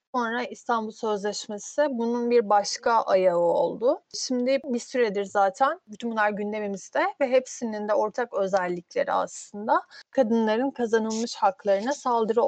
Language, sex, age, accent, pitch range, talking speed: Turkish, female, 30-49, native, 205-265 Hz, 120 wpm